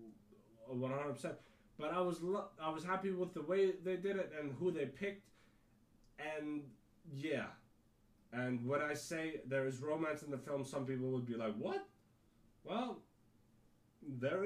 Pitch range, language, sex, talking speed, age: 110-165 Hz, English, male, 150 wpm, 20-39